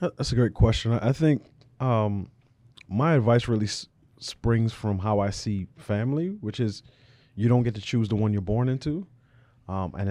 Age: 30-49